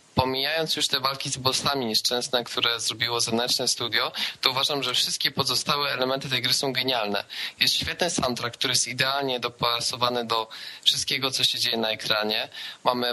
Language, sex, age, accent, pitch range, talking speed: Polish, male, 20-39, native, 120-135 Hz, 165 wpm